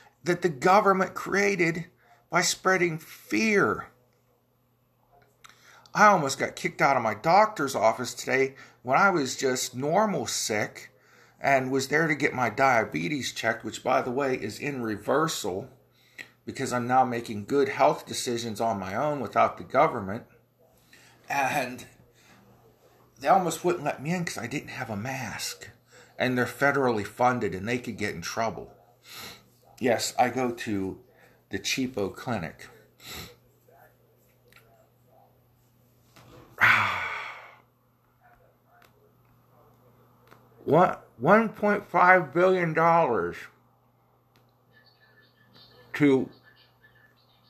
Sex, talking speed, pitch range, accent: male, 105 wpm, 120-155 Hz, American